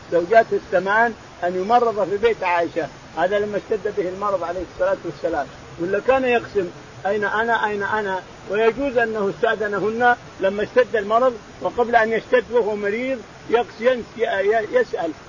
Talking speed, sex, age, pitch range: 140 wpm, male, 50-69, 185-235 Hz